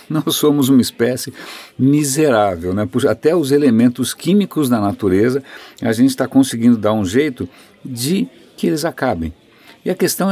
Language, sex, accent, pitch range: Portuguese, male, Brazilian, 100-150 Hz